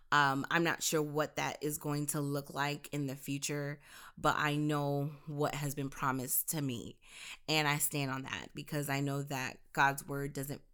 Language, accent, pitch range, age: English, American, 140-155 Hz, 20-39